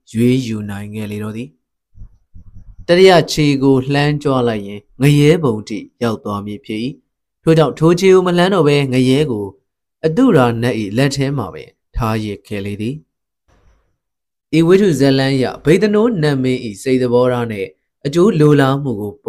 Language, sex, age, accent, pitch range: English, male, 20-39, Indian, 115-150 Hz